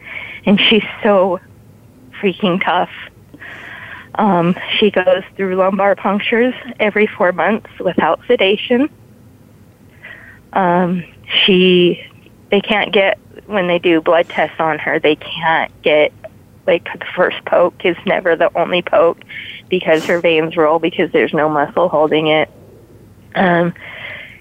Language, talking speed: English, 125 wpm